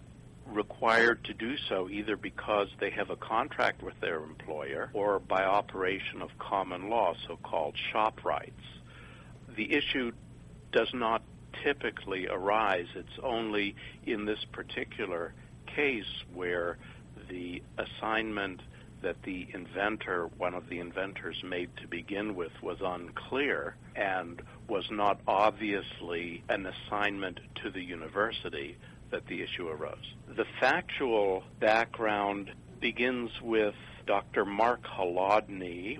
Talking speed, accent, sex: 115 wpm, American, male